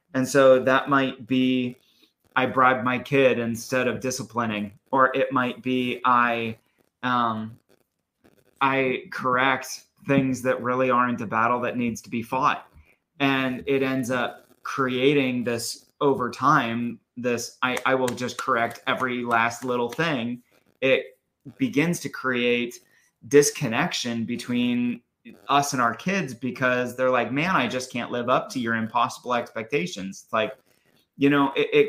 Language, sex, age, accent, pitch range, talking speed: English, male, 30-49, American, 120-140 Hz, 145 wpm